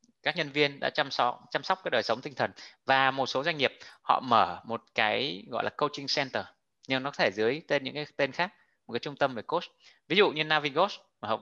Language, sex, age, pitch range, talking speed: Vietnamese, male, 20-39, 120-155 Hz, 250 wpm